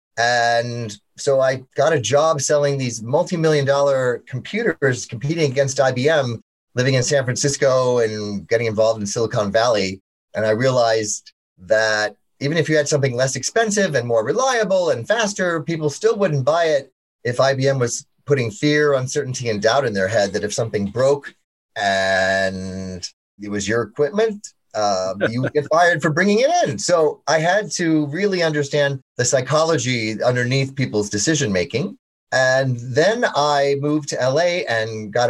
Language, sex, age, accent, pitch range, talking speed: English, male, 30-49, American, 115-150 Hz, 160 wpm